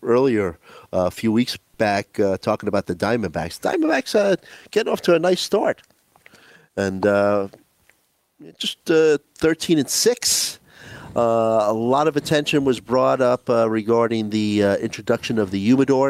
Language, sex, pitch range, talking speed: English, male, 105-135 Hz, 155 wpm